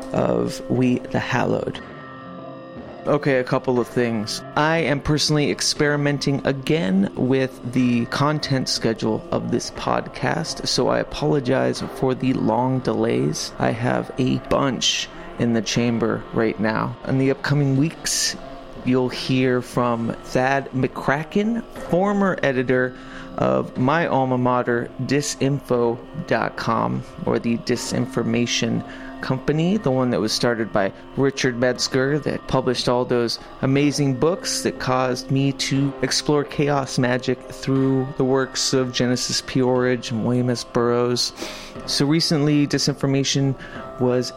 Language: English